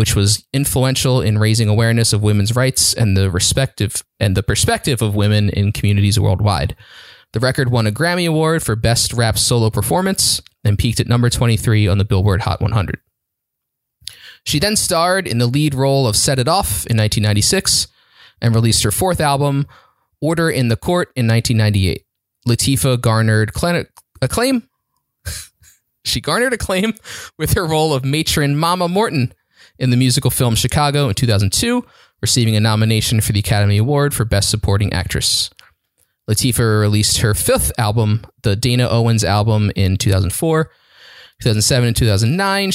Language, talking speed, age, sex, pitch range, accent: English, 155 wpm, 20-39, male, 105-135 Hz, American